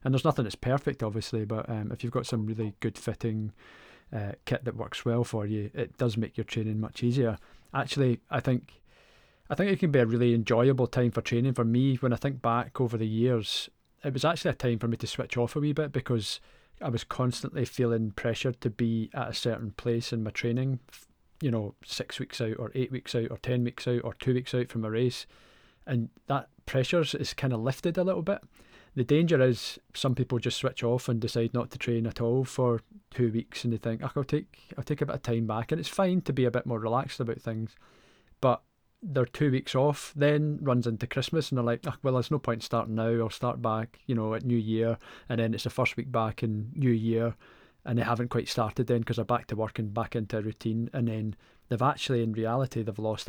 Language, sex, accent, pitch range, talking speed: English, male, British, 115-130 Hz, 235 wpm